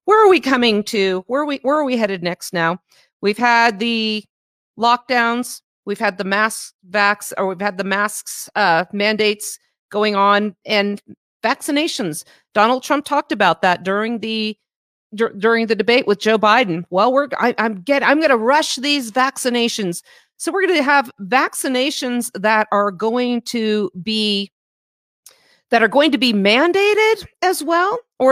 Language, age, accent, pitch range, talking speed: English, 40-59, American, 205-280 Hz, 165 wpm